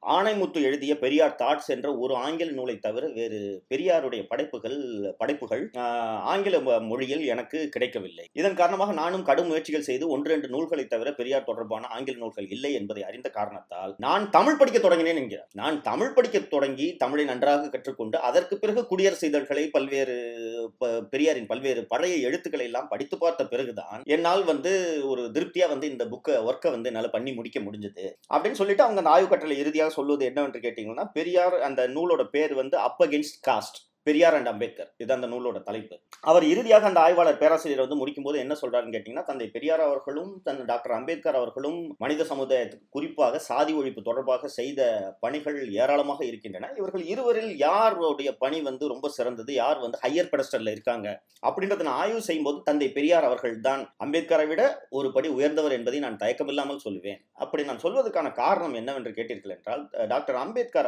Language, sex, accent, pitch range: Tamil, male, native, 130-180 Hz